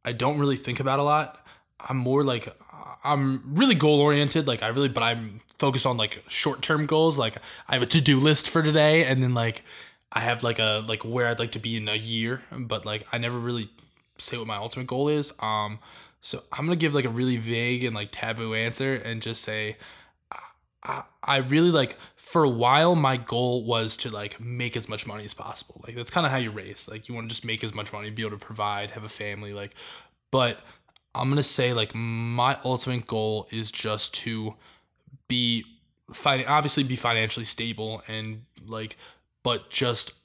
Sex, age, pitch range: male, 20-39, 110-130 Hz